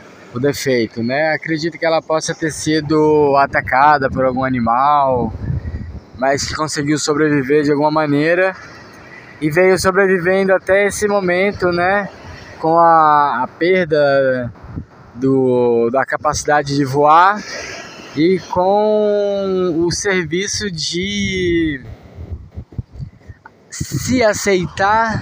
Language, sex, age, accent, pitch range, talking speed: Portuguese, male, 20-39, Brazilian, 140-185 Hz, 100 wpm